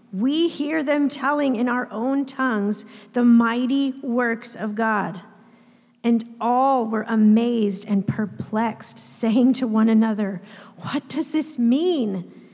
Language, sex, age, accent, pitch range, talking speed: English, female, 40-59, American, 210-260 Hz, 130 wpm